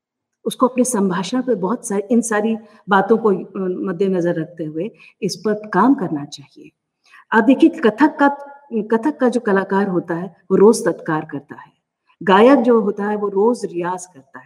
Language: Hindi